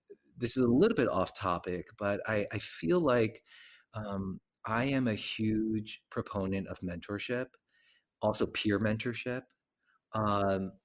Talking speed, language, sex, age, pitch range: 135 wpm, English, male, 30-49, 95-110 Hz